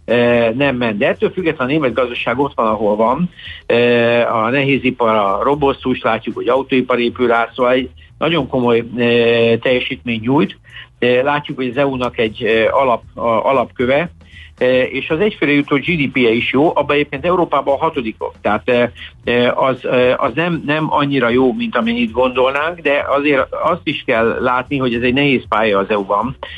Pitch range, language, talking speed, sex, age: 120-140 Hz, Hungarian, 165 wpm, male, 60-79